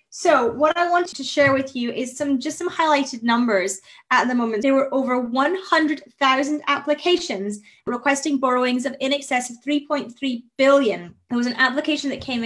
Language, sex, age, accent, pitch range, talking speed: English, female, 20-39, British, 230-285 Hz, 175 wpm